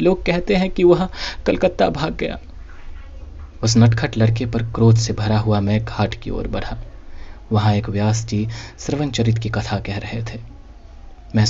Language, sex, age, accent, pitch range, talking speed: Hindi, male, 20-39, native, 85-115 Hz, 155 wpm